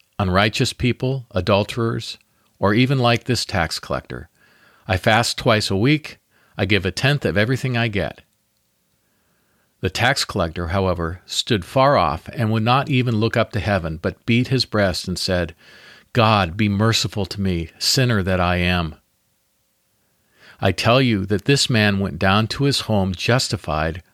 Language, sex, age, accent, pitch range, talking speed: English, male, 50-69, American, 95-125 Hz, 160 wpm